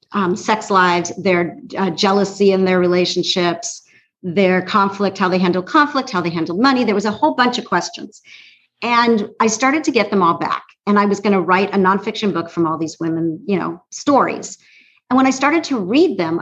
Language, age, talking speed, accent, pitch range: English, 50-69, 210 wpm, American, 175-230 Hz